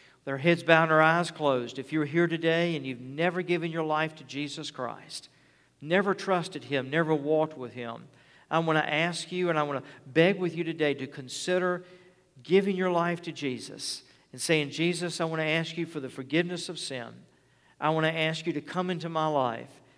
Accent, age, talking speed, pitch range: American, 50-69, 210 wpm, 140-170 Hz